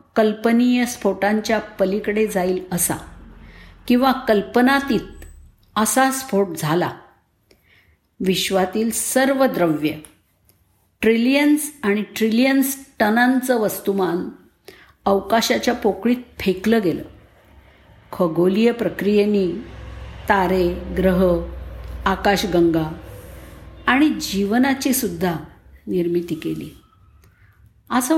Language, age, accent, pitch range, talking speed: Marathi, 50-69, native, 180-255 Hz, 70 wpm